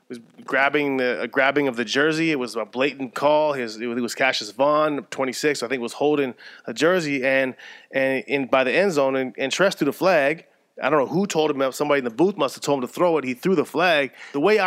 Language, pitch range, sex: English, 125-150 Hz, male